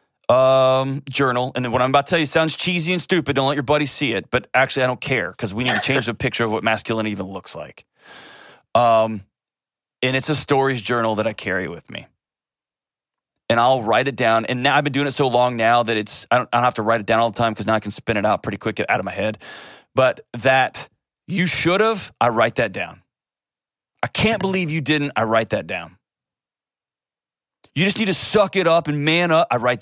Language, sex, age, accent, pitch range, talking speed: English, male, 30-49, American, 115-150 Hz, 240 wpm